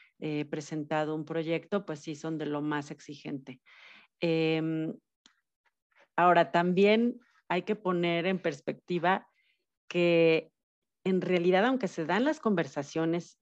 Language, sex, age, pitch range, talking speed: Spanish, female, 40-59, 160-195 Hz, 120 wpm